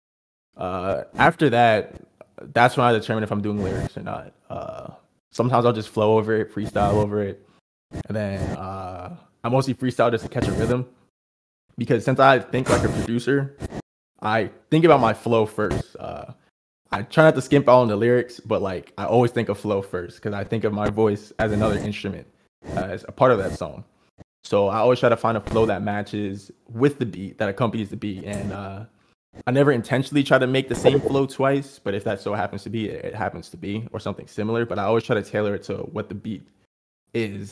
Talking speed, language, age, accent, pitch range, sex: 215 wpm, English, 20-39, American, 100-120 Hz, male